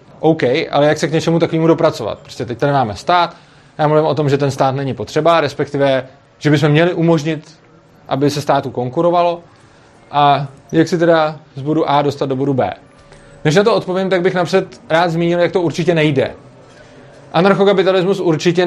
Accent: native